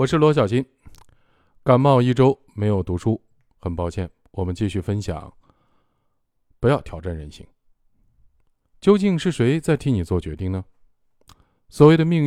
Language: Chinese